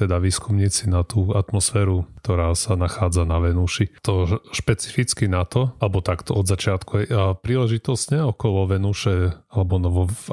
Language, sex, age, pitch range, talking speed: Slovak, male, 30-49, 90-105 Hz, 140 wpm